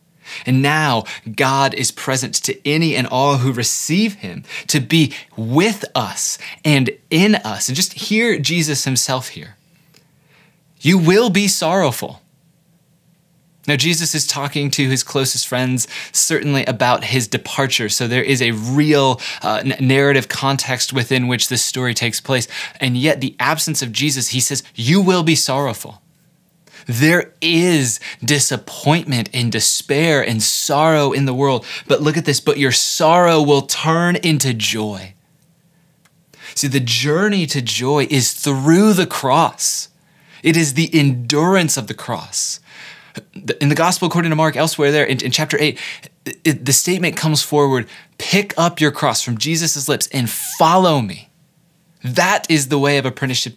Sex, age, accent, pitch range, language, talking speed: male, 20-39, American, 130-165 Hz, English, 150 wpm